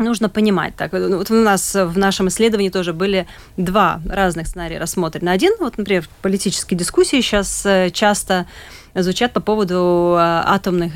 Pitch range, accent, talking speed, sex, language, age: 180-230 Hz, native, 150 wpm, female, Russian, 30-49